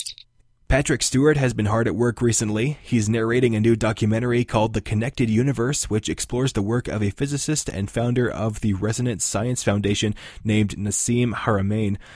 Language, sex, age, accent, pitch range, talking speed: English, male, 20-39, American, 100-120 Hz, 170 wpm